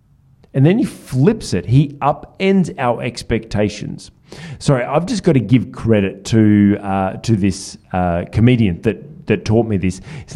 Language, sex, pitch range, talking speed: English, male, 100-135 Hz, 160 wpm